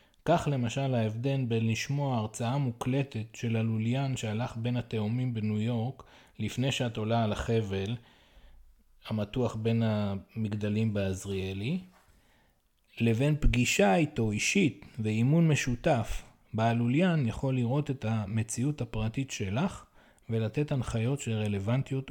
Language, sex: English, male